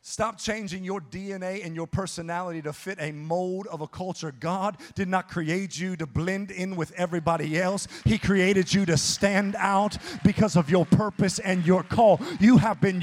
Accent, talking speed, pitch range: American, 190 wpm, 150-205 Hz